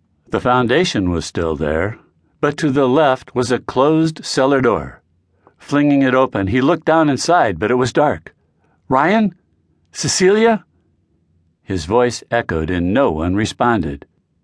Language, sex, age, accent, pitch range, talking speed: English, male, 60-79, American, 90-150 Hz, 140 wpm